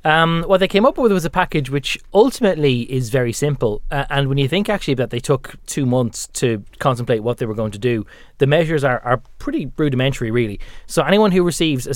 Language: English